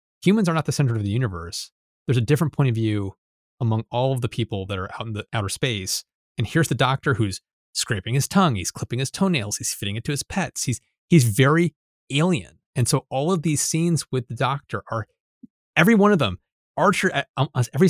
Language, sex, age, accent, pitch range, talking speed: English, male, 30-49, American, 115-150 Hz, 215 wpm